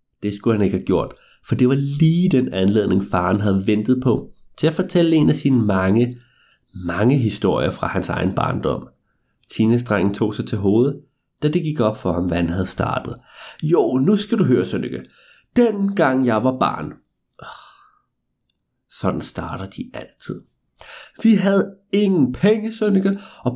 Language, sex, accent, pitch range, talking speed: Danish, male, native, 110-165 Hz, 170 wpm